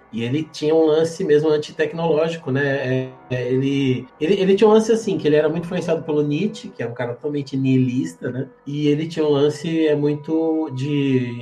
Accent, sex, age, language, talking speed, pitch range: Brazilian, male, 20-39, Portuguese, 195 wpm, 125-150 Hz